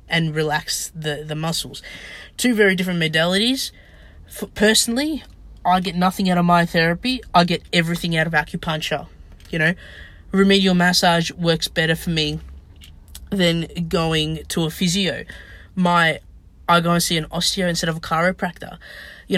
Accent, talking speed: Australian, 150 wpm